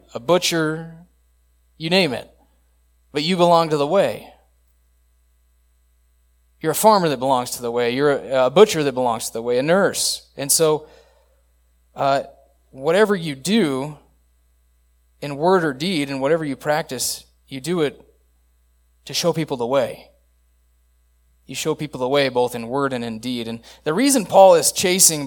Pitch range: 115-155 Hz